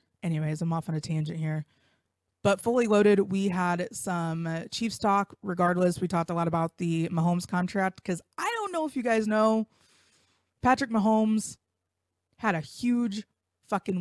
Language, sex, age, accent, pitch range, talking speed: English, female, 20-39, American, 165-195 Hz, 165 wpm